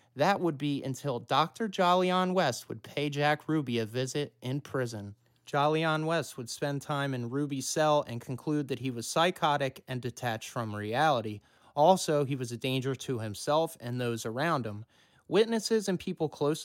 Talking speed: 175 wpm